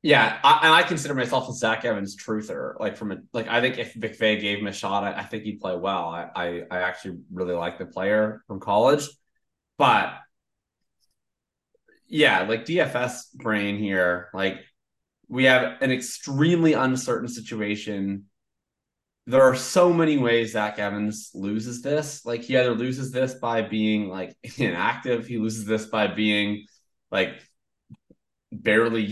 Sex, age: male, 20-39